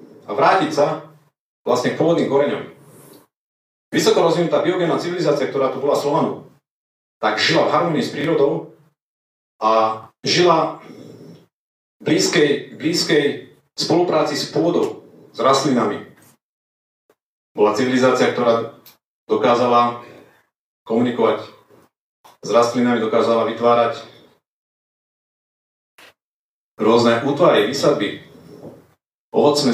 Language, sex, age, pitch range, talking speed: Slovak, male, 40-59, 110-130 Hz, 90 wpm